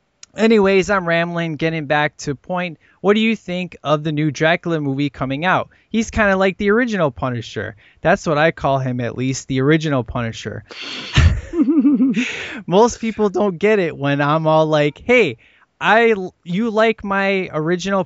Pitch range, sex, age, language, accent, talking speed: 145-200 Hz, male, 20-39, English, American, 165 wpm